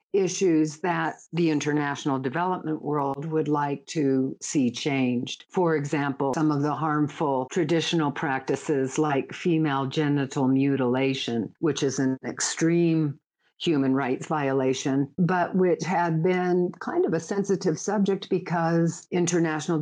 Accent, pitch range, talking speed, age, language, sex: American, 150-180 Hz, 125 wpm, 50-69, English, female